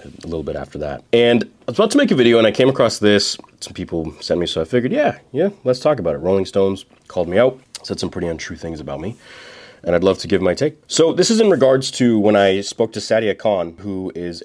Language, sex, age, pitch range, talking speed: English, male, 30-49, 85-120 Hz, 265 wpm